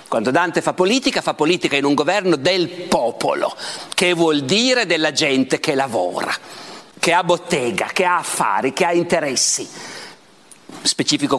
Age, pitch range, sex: 50-69, 150-195 Hz, male